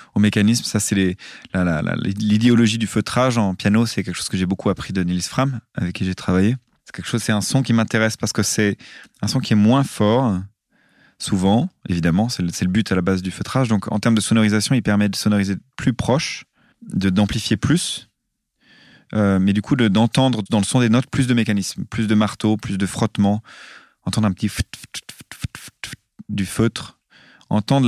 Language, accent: French, French